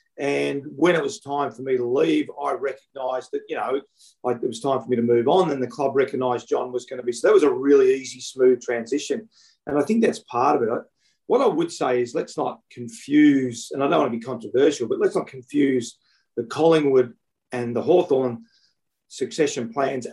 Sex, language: male, English